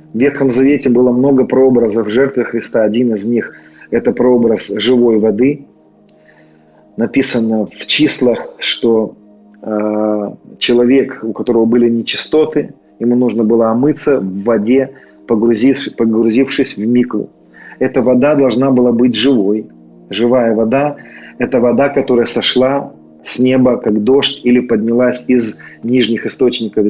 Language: Russian